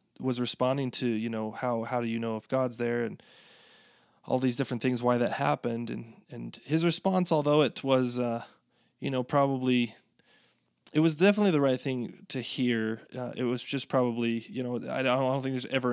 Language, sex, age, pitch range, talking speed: English, male, 20-39, 115-130 Hz, 205 wpm